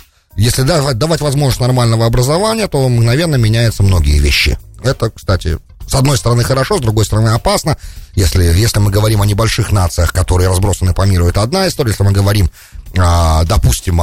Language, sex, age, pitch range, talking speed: English, male, 30-49, 90-125 Hz, 165 wpm